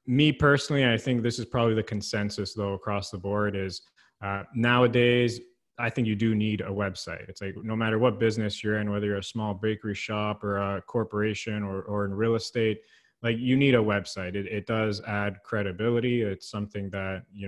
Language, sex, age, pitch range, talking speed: English, male, 20-39, 100-120 Hz, 205 wpm